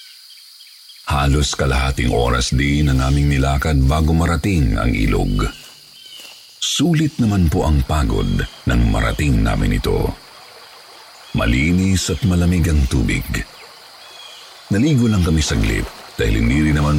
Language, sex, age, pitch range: Filipino, male, 50-69, 70-85 Hz